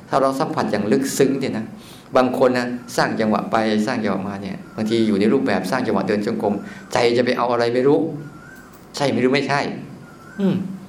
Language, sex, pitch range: Thai, male, 115-145 Hz